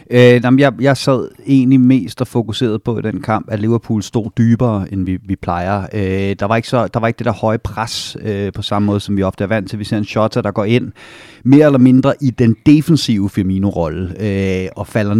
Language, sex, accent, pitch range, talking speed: Danish, male, native, 105-130 Hz, 215 wpm